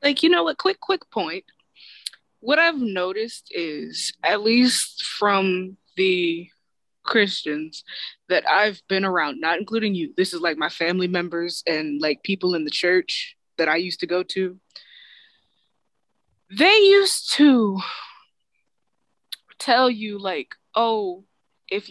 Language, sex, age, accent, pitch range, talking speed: English, female, 20-39, American, 180-230 Hz, 135 wpm